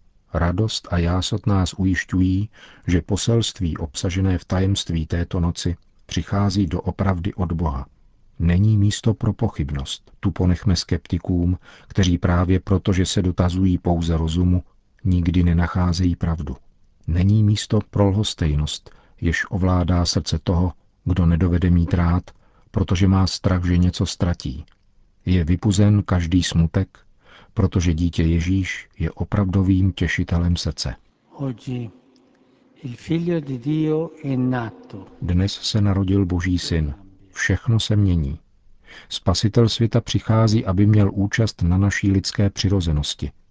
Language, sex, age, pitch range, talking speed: Czech, male, 50-69, 85-100 Hz, 110 wpm